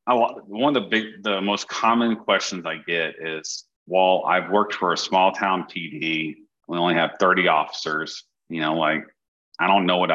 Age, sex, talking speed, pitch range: 40-59, male, 195 wpm, 90-105 Hz